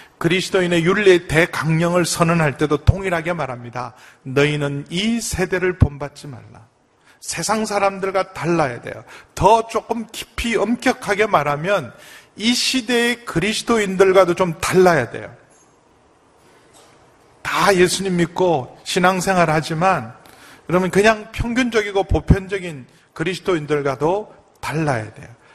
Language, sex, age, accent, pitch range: Korean, male, 40-59, native, 150-195 Hz